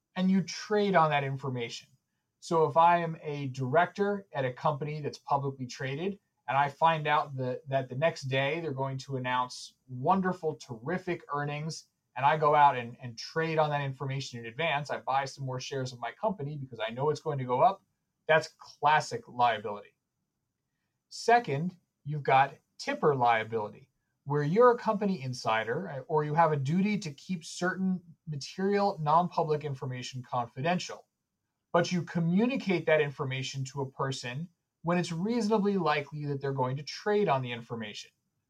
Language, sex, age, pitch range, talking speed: English, male, 30-49, 135-175 Hz, 165 wpm